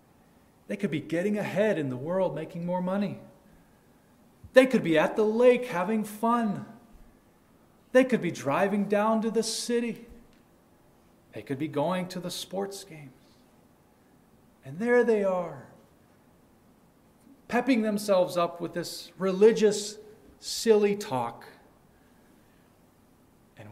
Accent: American